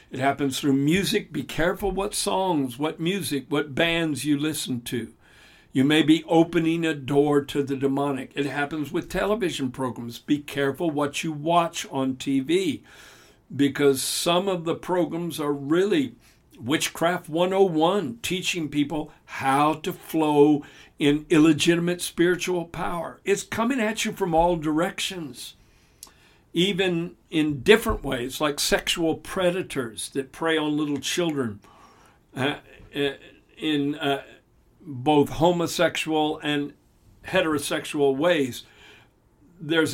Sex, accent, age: male, American, 60-79